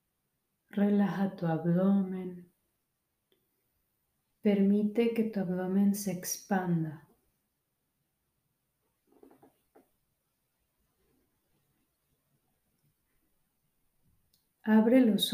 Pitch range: 190-235 Hz